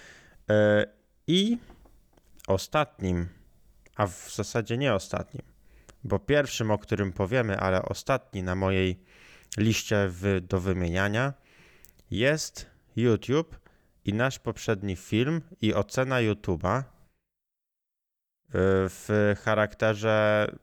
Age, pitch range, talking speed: 20-39, 95-115 Hz, 85 wpm